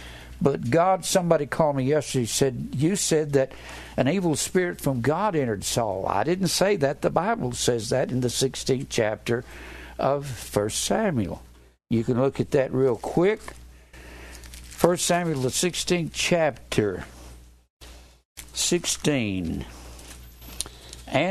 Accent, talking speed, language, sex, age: American, 125 wpm, English, male, 60-79